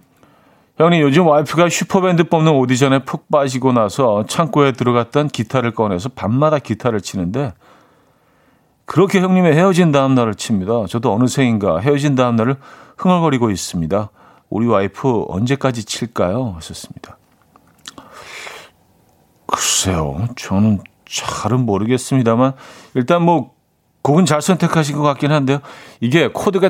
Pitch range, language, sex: 100-150 Hz, Korean, male